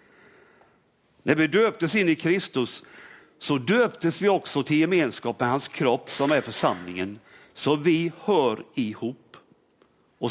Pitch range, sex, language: 135-195 Hz, male, Swedish